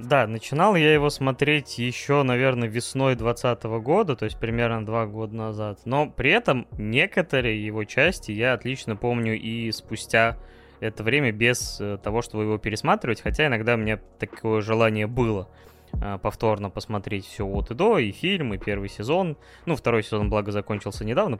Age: 20-39